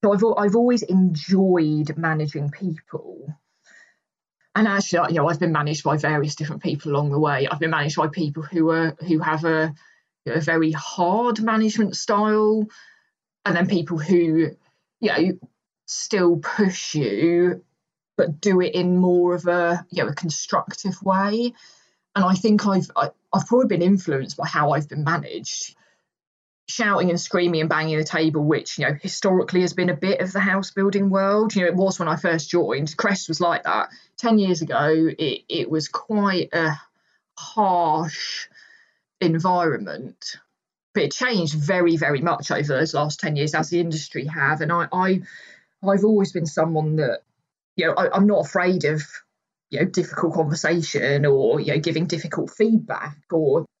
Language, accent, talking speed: English, British, 175 wpm